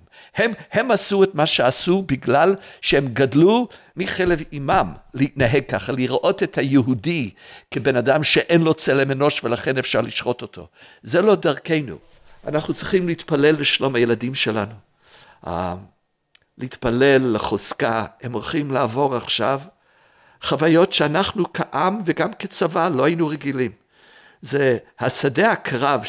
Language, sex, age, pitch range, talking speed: Hebrew, male, 60-79, 120-165 Hz, 120 wpm